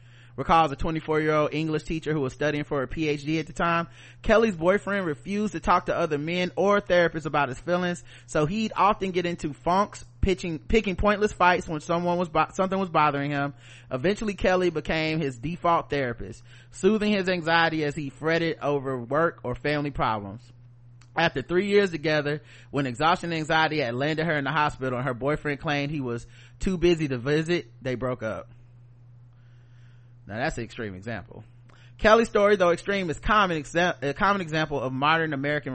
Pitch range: 125-170 Hz